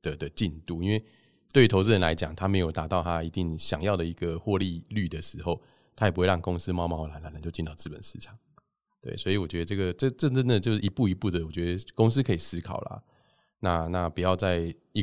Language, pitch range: Chinese, 85-110 Hz